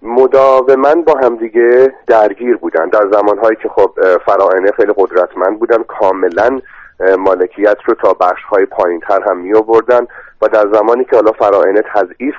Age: 40-59